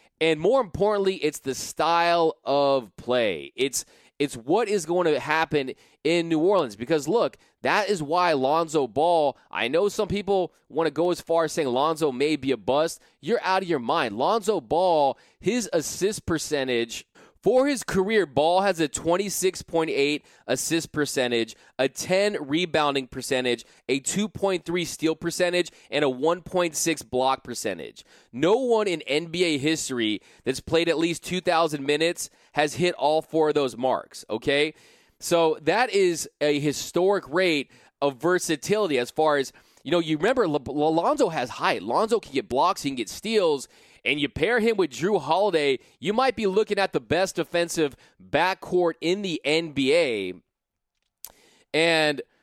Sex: male